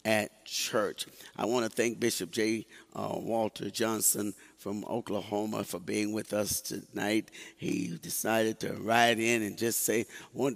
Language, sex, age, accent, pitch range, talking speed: English, male, 50-69, American, 105-125 Hz, 155 wpm